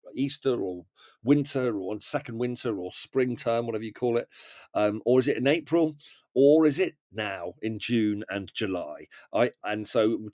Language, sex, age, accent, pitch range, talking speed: English, male, 40-59, British, 110-140 Hz, 180 wpm